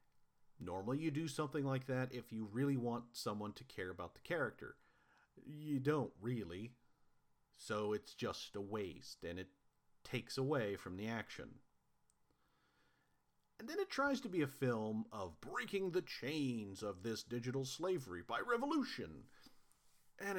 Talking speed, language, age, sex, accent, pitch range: 145 wpm, English, 40-59, male, American, 105-145 Hz